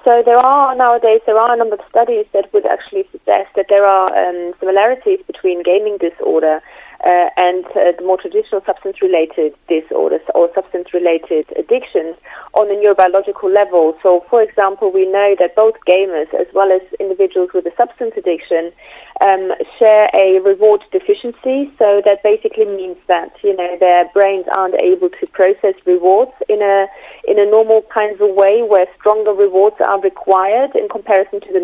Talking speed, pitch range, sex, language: 170 wpm, 185-235 Hz, female, English